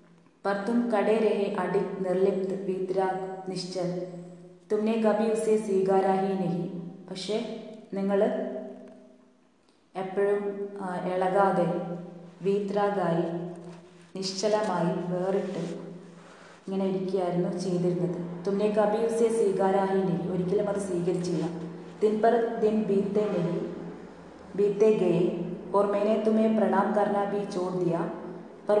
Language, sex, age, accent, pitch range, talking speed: Hindi, female, 20-39, native, 180-205 Hz, 70 wpm